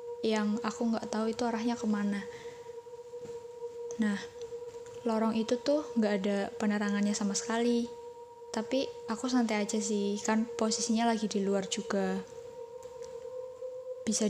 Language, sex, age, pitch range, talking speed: Indonesian, female, 20-39, 215-360 Hz, 120 wpm